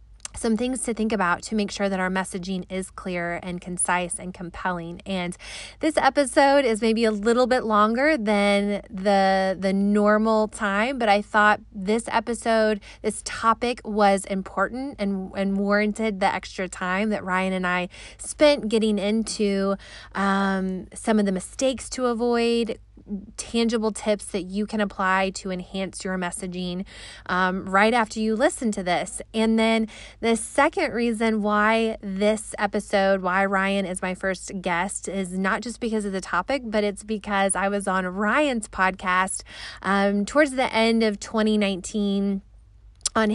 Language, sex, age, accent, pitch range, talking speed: English, female, 20-39, American, 190-225 Hz, 155 wpm